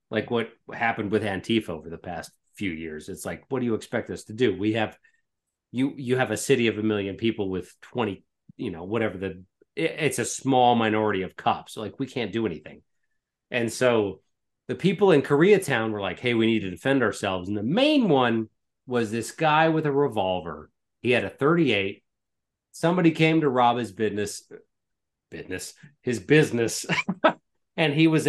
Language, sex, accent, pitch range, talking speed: English, male, American, 105-140 Hz, 185 wpm